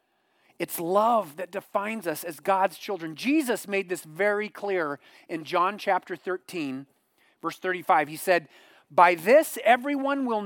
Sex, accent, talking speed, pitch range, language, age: male, American, 145 wpm, 145-200 Hz, English, 40-59